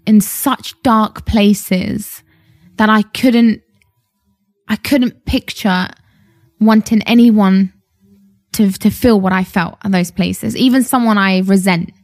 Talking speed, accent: 125 wpm, British